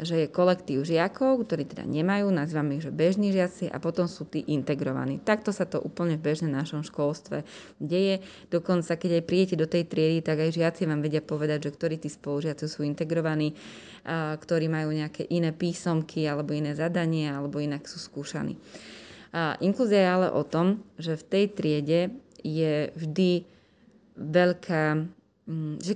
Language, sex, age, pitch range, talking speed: Slovak, female, 20-39, 155-180 Hz, 165 wpm